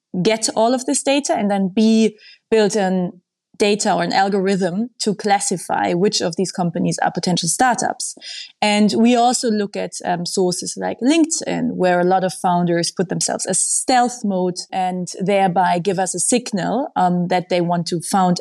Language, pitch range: English, 185-230 Hz